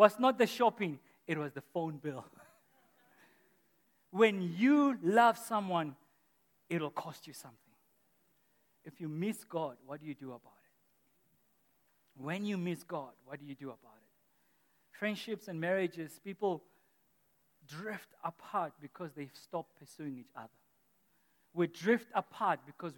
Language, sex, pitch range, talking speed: English, male, 145-180 Hz, 140 wpm